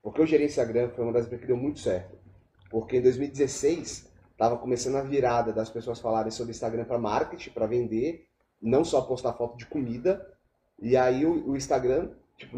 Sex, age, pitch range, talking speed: male, 30-49, 120-150 Hz, 180 wpm